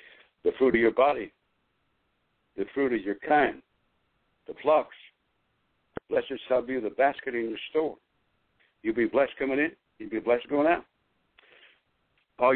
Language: English